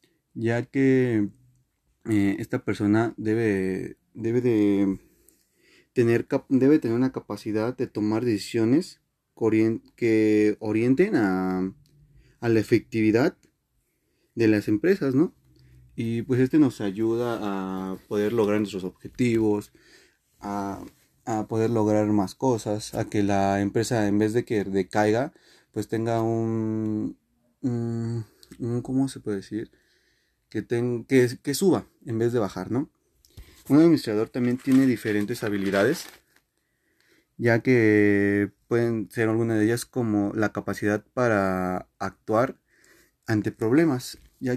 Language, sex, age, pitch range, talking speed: Spanish, male, 30-49, 100-120 Hz, 120 wpm